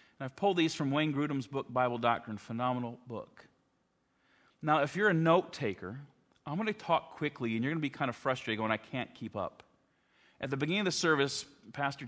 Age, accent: 40-59, American